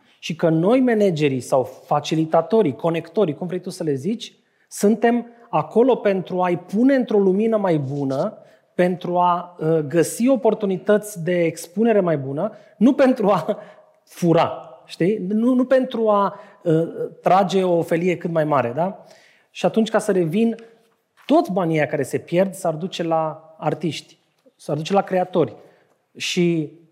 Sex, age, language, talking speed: male, 30-49, Romanian, 145 wpm